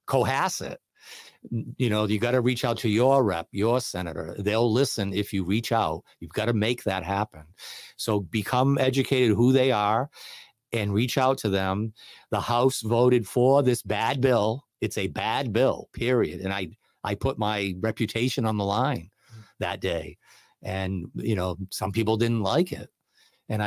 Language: English